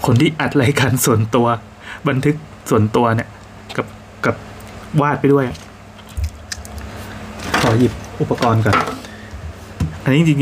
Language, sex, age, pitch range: Thai, male, 20-39, 105-135 Hz